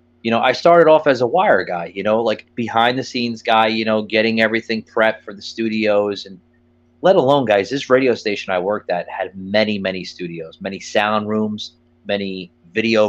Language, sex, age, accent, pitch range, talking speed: English, male, 30-49, American, 90-120 Hz, 195 wpm